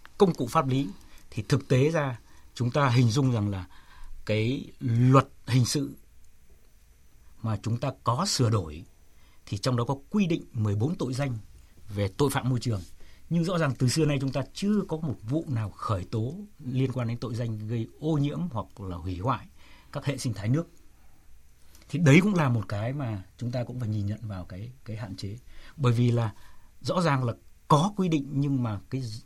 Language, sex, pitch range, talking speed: Vietnamese, male, 100-140 Hz, 205 wpm